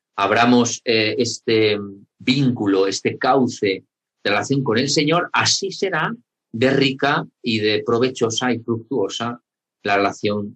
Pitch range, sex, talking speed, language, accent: 100-130 Hz, male, 125 wpm, Spanish, Spanish